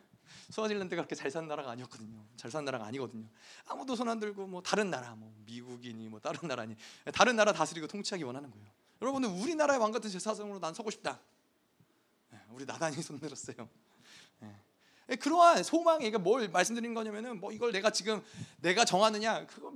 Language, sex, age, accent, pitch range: Korean, male, 30-49, native, 200-290 Hz